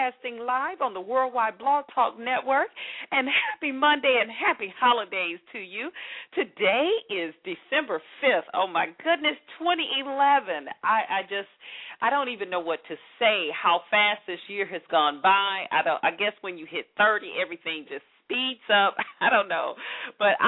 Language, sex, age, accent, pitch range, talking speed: English, female, 40-59, American, 205-320 Hz, 165 wpm